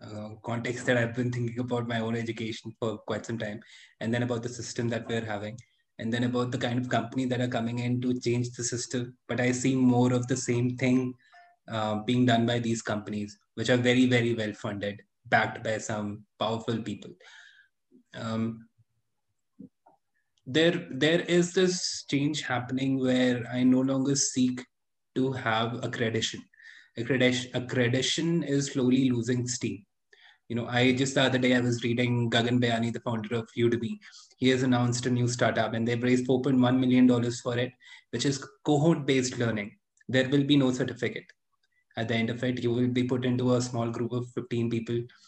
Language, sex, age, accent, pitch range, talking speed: English, male, 20-39, Indian, 115-130 Hz, 180 wpm